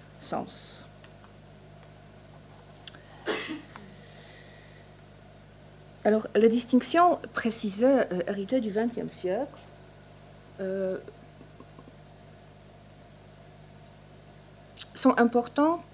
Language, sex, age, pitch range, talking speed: French, female, 40-59, 195-240 Hz, 45 wpm